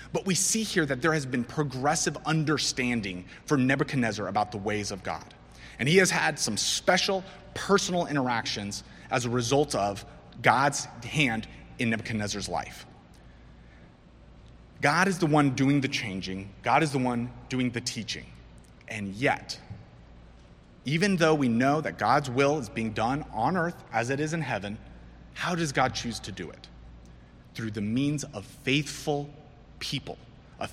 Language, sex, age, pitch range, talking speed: English, male, 30-49, 100-150 Hz, 160 wpm